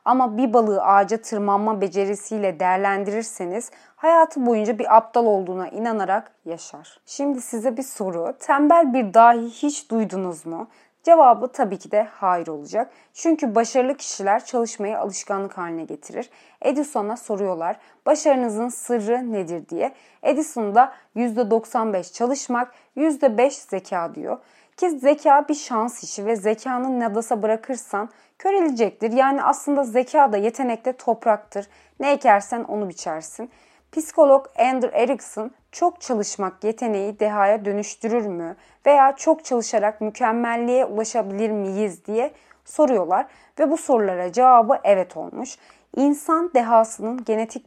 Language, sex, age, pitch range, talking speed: Turkish, female, 30-49, 205-260 Hz, 120 wpm